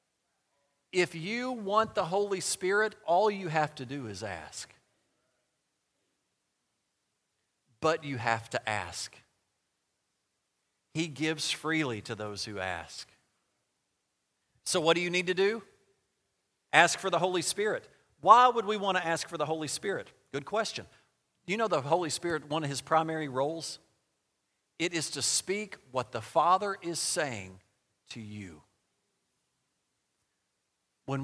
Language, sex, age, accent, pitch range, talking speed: English, male, 40-59, American, 120-185 Hz, 140 wpm